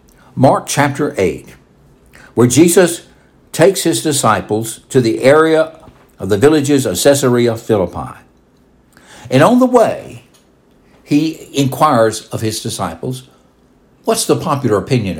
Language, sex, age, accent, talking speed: English, male, 60-79, American, 120 wpm